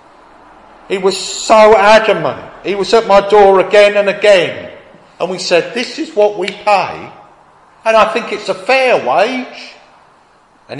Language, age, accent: English, 50-69, British